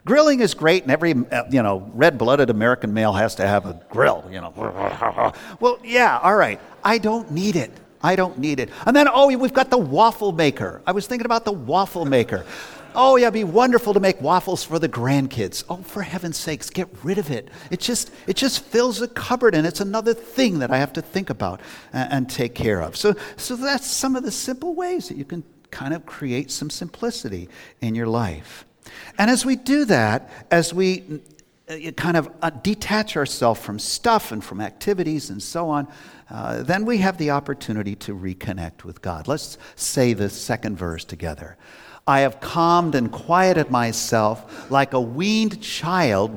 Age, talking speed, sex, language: 50-69, 190 wpm, male, English